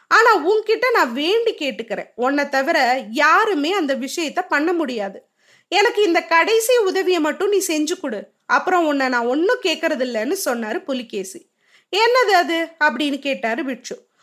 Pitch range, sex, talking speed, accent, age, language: 285-400 Hz, female, 140 wpm, native, 20-39, Tamil